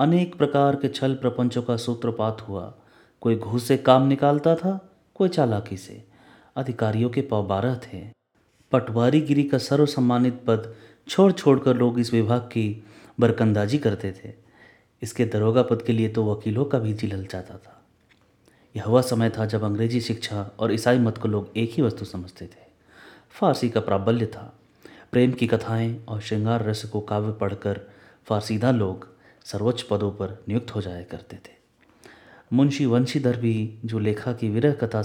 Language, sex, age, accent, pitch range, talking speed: Hindi, male, 30-49, native, 105-125 Hz, 160 wpm